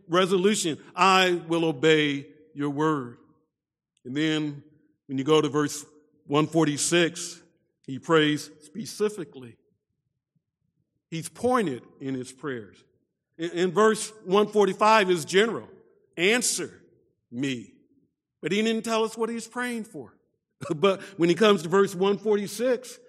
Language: English